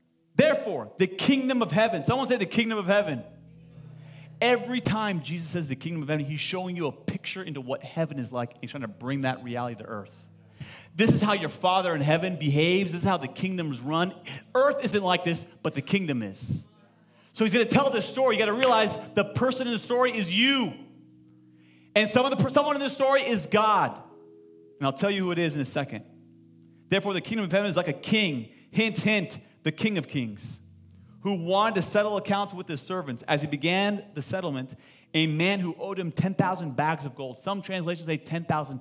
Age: 30-49